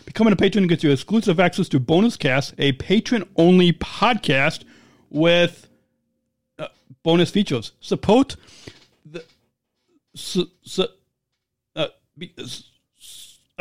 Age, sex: 40-59, male